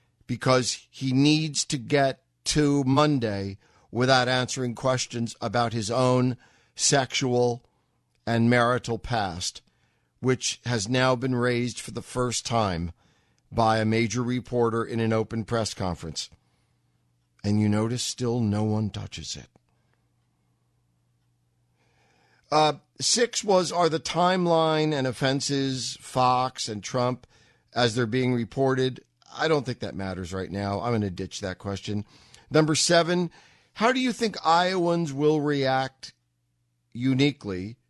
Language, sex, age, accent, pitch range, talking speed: English, male, 50-69, American, 110-140 Hz, 130 wpm